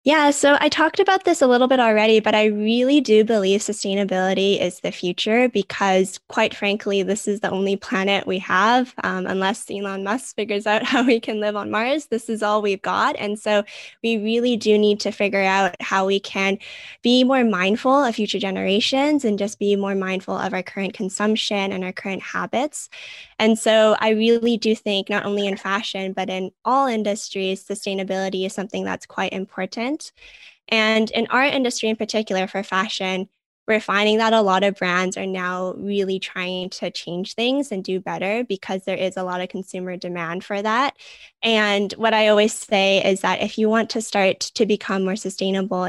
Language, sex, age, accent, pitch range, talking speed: English, female, 10-29, American, 190-220 Hz, 195 wpm